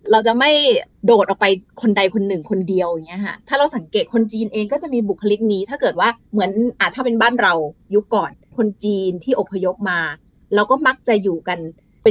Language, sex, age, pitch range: Thai, female, 20-39, 200-255 Hz